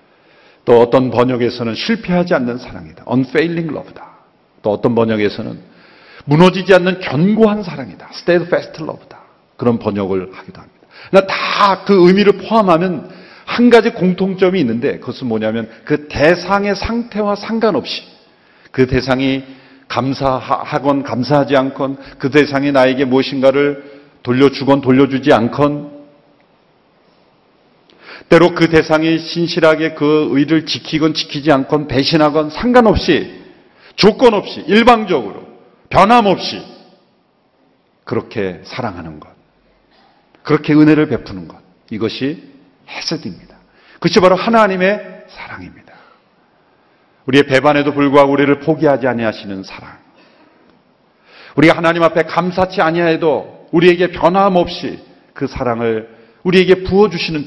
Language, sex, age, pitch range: Korean, male, 50-69, 130-180 Hz